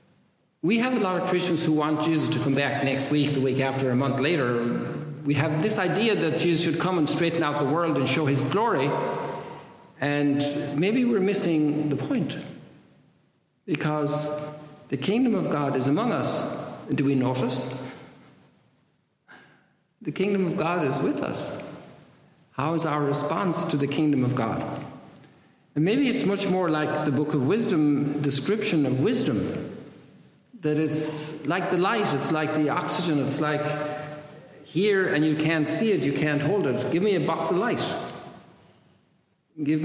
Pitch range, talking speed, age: 140-175 Hz, 165 wpm, 60-79